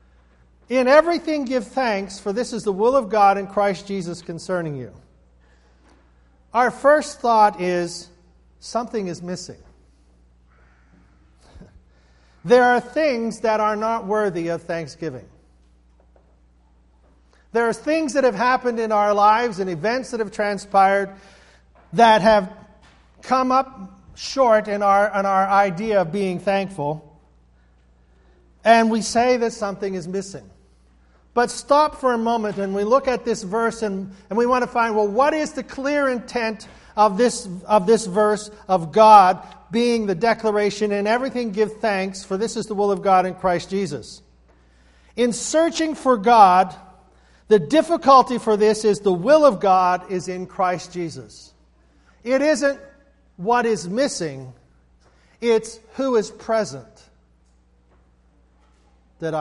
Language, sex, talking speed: English, male, 140 wpm